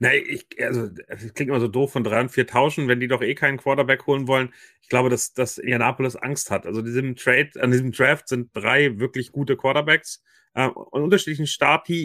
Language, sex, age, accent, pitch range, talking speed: German, male, 30-49, German, 120-140 Hz, 205 wpm